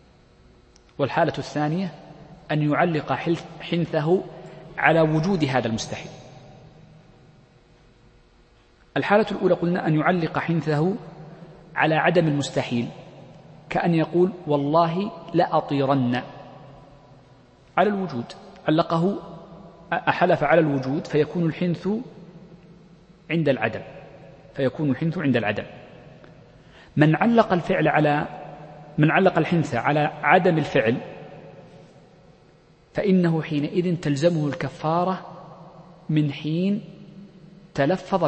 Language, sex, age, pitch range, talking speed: Arabic, male, 40-59, 150-180 Hz, 85 wpm